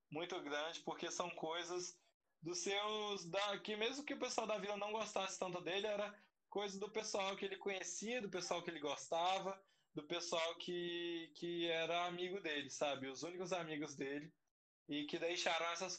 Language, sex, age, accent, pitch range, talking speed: Portuguese, male, 20-39, Brazilian, 155-195 Hz, 175 wpm